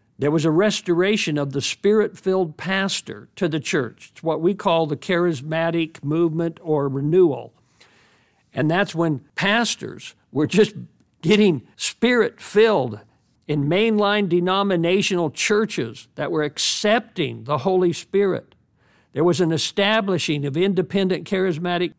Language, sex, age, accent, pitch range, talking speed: English, male, 60-79, American, 145-195 Hz, 125 wpm